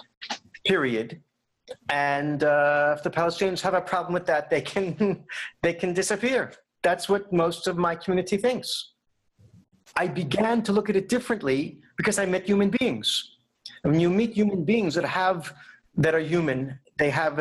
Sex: male